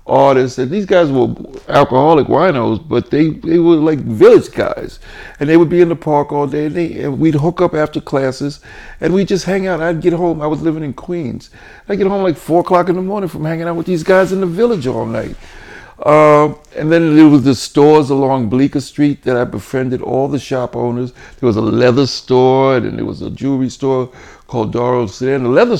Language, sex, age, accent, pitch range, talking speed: English, male, 60-79, American, 125-170 Hz, 230 wpm